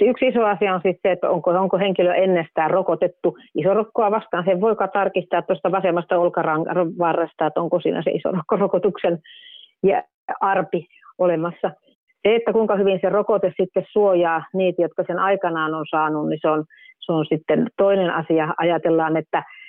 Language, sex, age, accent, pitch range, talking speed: Finnish, female, 40-59, native, 160-195 Hz, 150 wpm